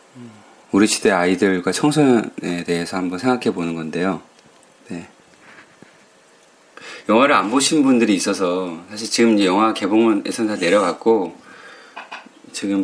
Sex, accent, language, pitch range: male, native, Korean, 90-115 Hz